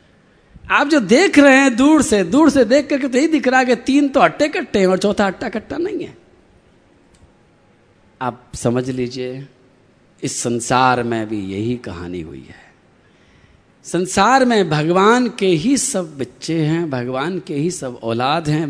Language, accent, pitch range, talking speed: Hindi, native, 115-185 Hz, 170 wpm